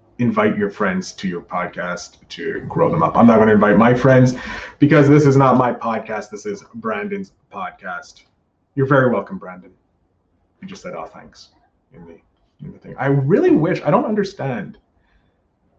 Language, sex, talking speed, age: English, male, 180 wpm, 30-49